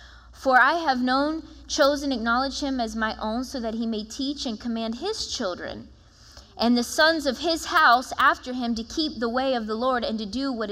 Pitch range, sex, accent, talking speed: 225-280 Hz, female, American, 215 wpm